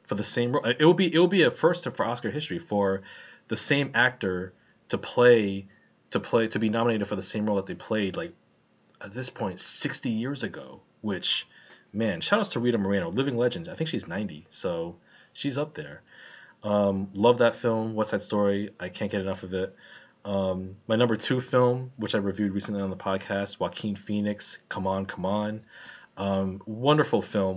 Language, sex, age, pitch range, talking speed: English, male, 20-39, 95-120 Hz, 200 wpm